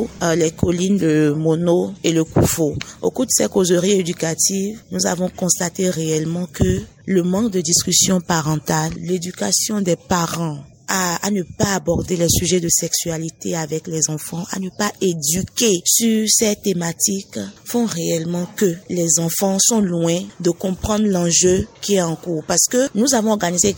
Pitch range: 175-215 Hz